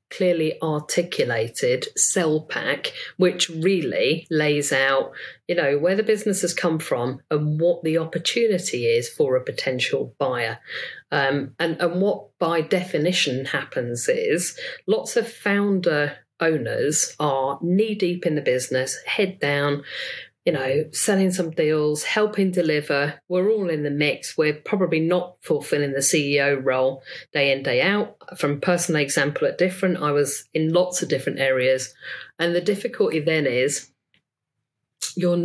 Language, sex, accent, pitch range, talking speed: English, female, British, 145-185 Hz, 145 wpm